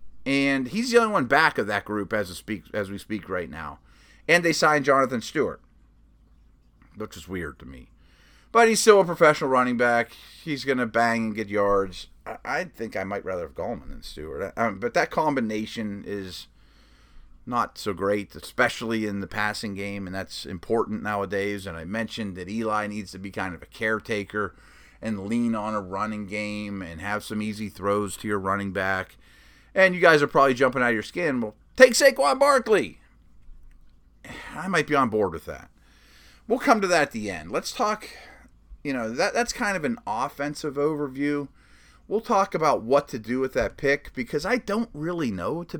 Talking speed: 190 wpm